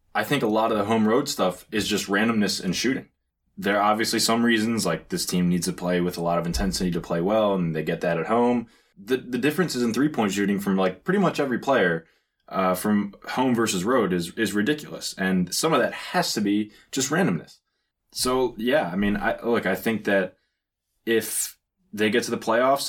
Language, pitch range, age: English, 95-115 Hz, 20-39